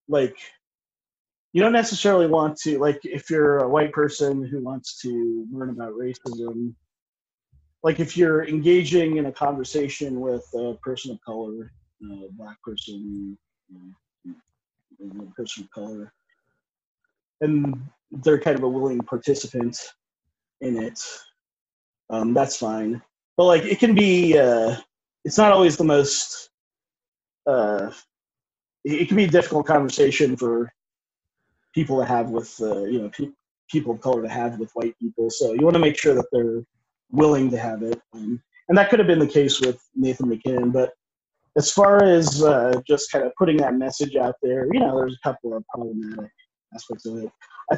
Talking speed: 165 wpm